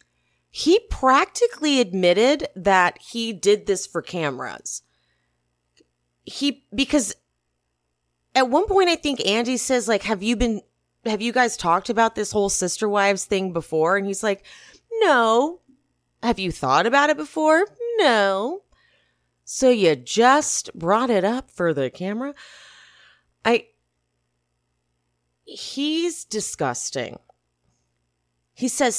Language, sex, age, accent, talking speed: English, female, 30-49, American, 120 wpm